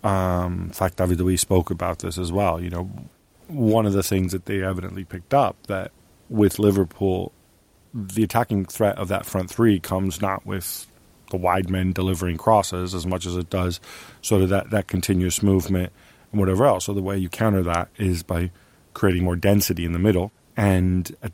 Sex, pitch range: male, 90-100 Hz